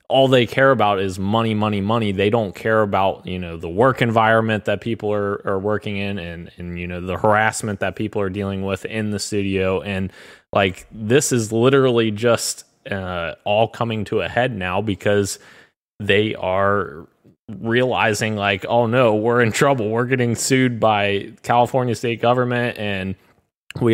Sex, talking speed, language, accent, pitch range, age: male, 175 wpm, English, American, 100-115 Hz, 20-39